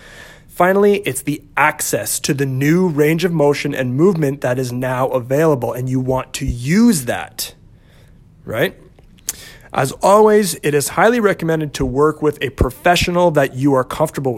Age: 30-49